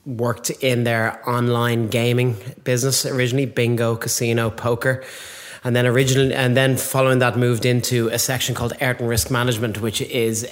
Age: 30-49